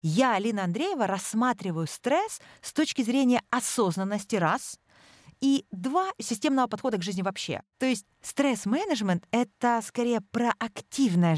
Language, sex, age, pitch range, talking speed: Russian, female, 30-49, 190-260 Hz, 120 wpm